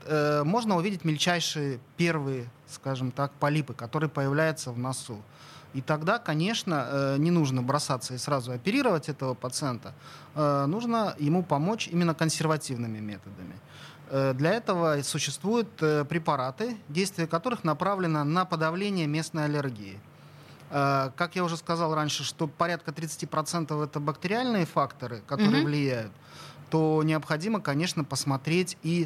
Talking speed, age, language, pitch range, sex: 120 wpm, 30-49, Russian, 140-170 Hz, male